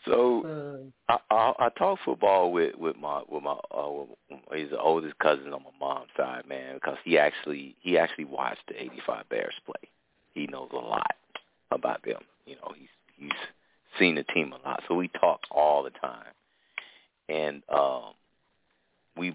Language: English